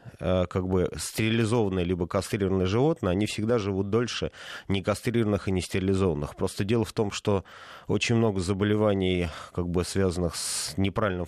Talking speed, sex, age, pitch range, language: 145 wpm, male, 30-49, 95-110 Hz, Russian